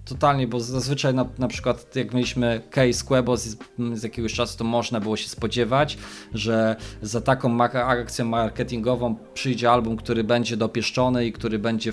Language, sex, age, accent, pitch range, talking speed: Polish, male, 20-39, native, 110-120 Hz, 165 wpm